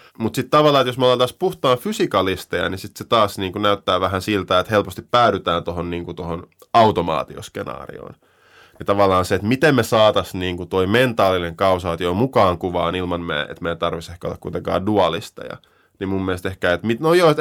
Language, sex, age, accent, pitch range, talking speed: Finnish, male, 20-39, native, 90-125 Hz, 180 wpm